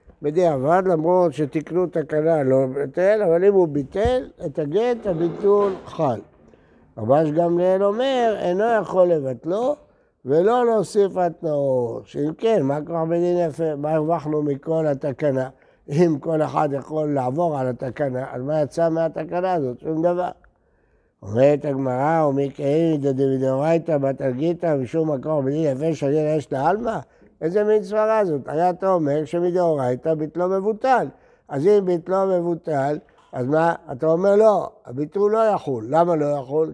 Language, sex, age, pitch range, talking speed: Hebrew, male, 60-79, 140-180 Hz, 145 wpm